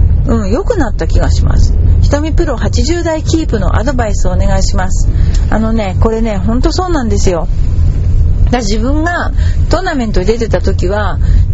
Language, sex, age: Japanese, female, 40-59